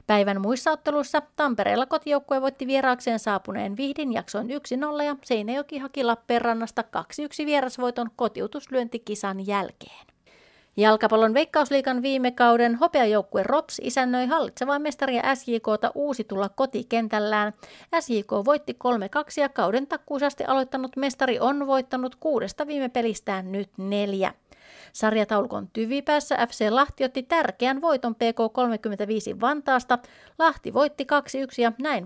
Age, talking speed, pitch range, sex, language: 30-49, 115 wpm, 220-280 Hz, female, Finnish